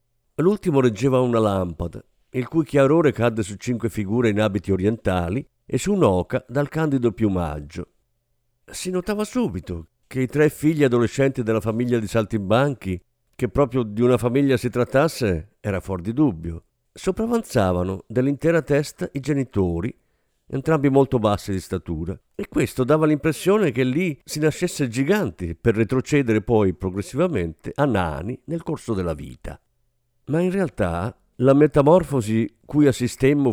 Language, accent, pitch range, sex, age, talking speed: Italian, native, 100-140 Hz, male, 50-69, 140 wpm